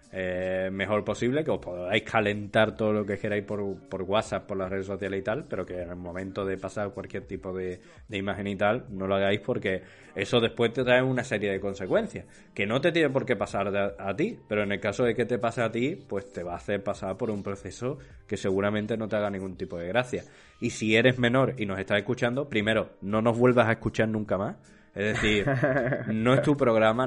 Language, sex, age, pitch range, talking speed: Spanish, male, 20-39, 100-115 Hz, 235 wpm